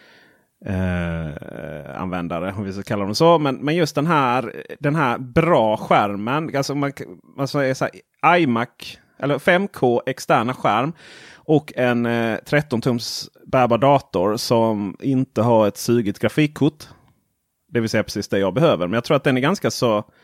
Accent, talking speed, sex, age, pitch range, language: native, 165 wpm, male, 30-49, 110-145 Hz, Swedish